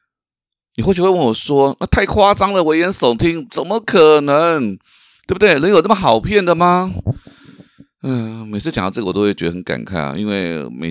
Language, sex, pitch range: Chinese, male, 95-155 Hz